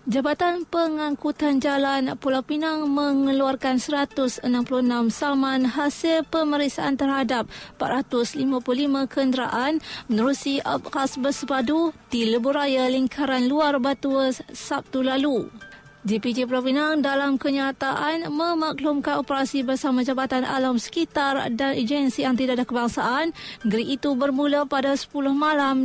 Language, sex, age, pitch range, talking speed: Malay, female, 20-39, 255-295 Hz, 100 wpm